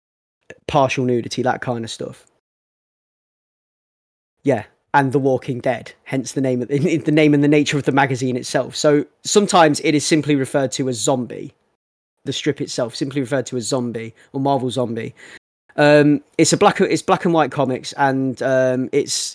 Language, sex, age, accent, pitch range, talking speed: English, male, 20-39, British, 125-145 Hz, 175 wpm